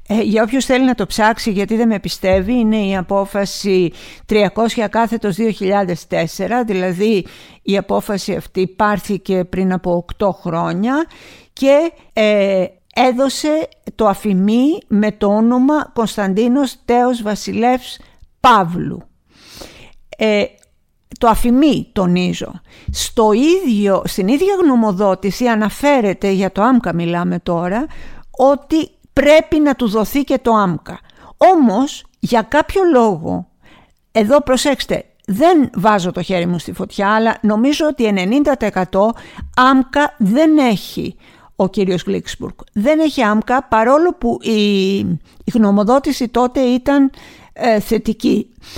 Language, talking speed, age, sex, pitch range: Greek, 115 wpm, 50-69, female, 195-255 Hz